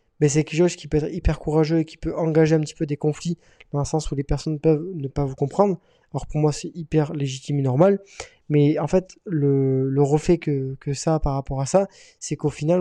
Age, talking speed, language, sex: 20-39, 255 wpm, French, male